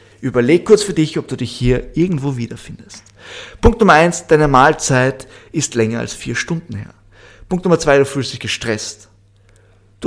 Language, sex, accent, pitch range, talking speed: German, male, German, 105-145 Hz, 175 wpm